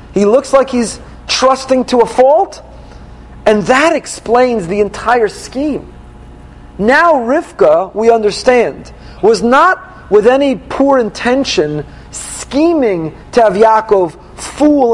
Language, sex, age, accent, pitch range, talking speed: English, male, 40-59, American, 210-270 Hz, 115 wpm